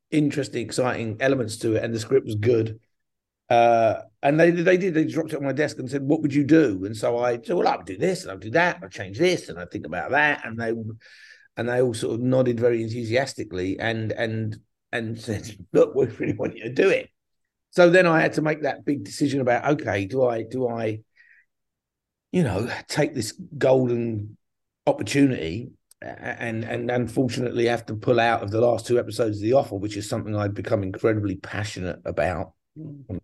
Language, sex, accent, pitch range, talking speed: English, male, British, 105-135 Hz, 210 wpm